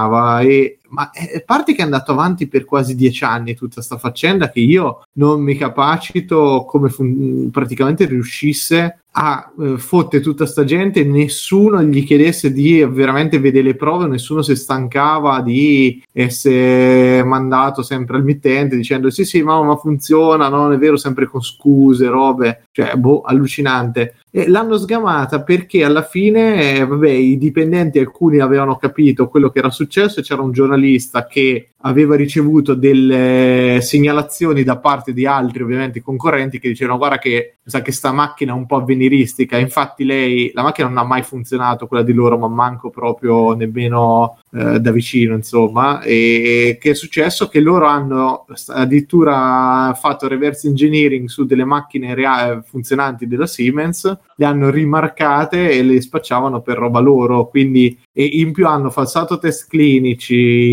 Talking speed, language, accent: 160 wpm, Italian, native